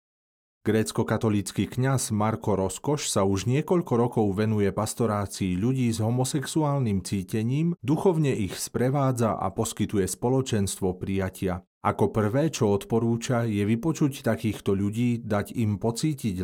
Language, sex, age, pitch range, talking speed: Slovak, male, 40-59, 100-125 Hz, 120 wpm